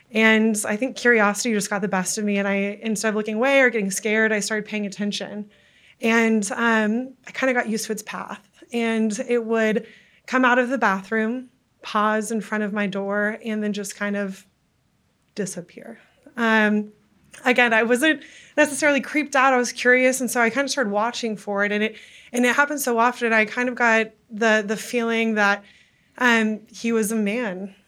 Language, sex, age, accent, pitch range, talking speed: English, female, 20-39, American, 210-245 Hz, 200 wpm